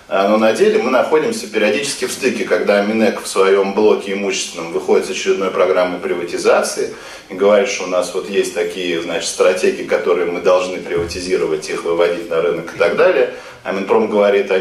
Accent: native